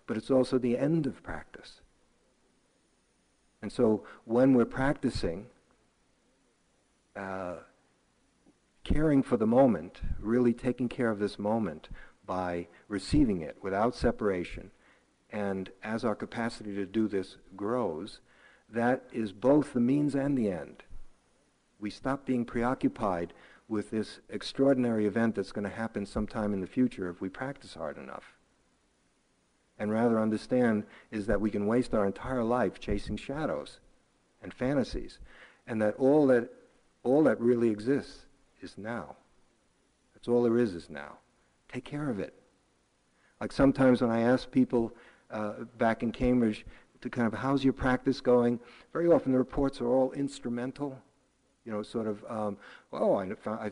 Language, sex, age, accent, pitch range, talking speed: English, male, 60-79, American, 105-130 Hz, 145 wpm